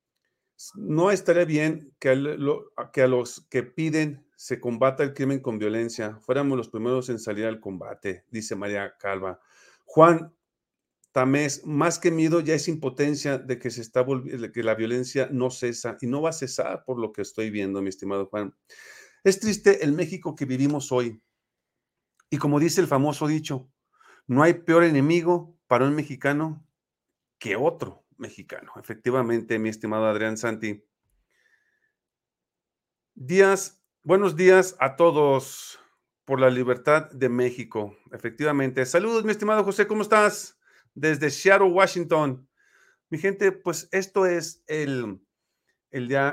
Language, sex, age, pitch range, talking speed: Spanish, male, 40-59, 120-165 Hz, 140 wpm